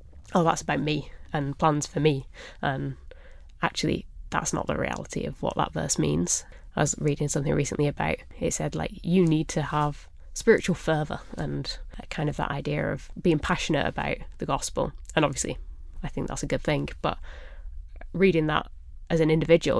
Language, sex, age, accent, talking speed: English, female, 20-39, British, 180 wpm